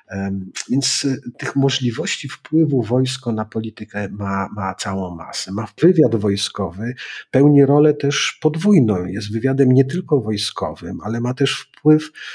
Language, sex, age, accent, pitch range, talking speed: Polish, male, 40-59, native, 100-130 Hz, 130 wpm